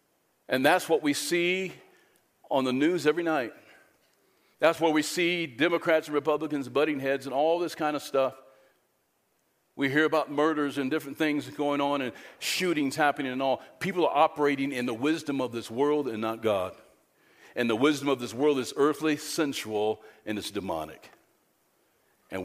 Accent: American